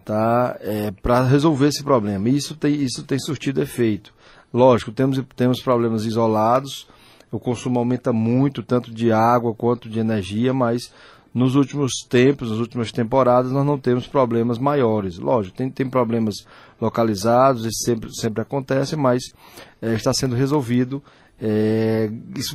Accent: Brazilian